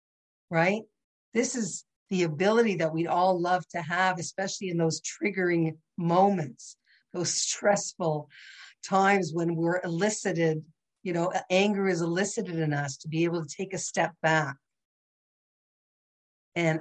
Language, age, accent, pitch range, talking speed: English, 50-69, American, 160-195 Hz, 135 wpm